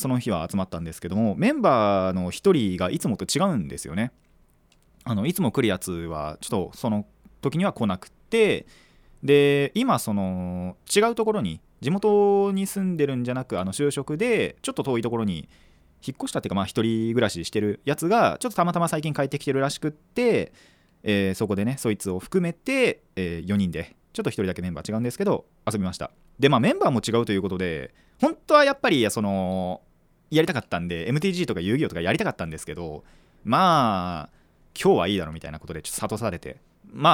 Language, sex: Japanese, male